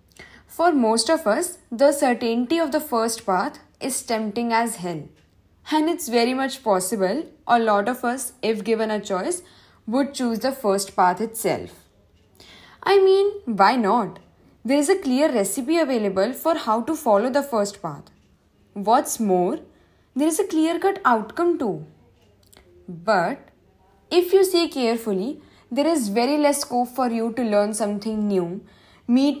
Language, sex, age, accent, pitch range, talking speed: English, female, 10-29, Indian, 195-295 Hz, 155 wpm